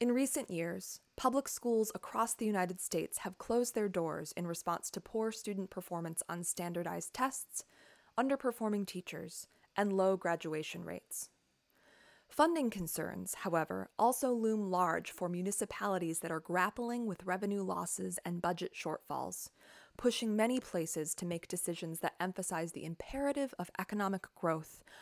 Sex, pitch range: female, 170-220 Hz